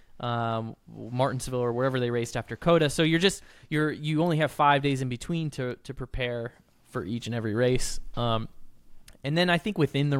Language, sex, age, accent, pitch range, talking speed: English, male, 20-39, American, 115-145 Hz, 200 wpm